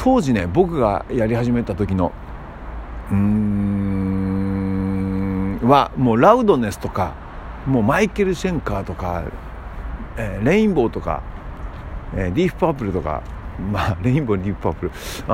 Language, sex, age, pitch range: Japanese, male, 50-69, 85-130 Hz